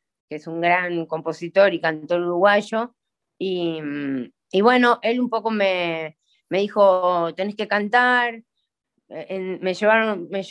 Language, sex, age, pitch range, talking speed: Spanish, female, 20-39, 165-205 Hz, 135 wpm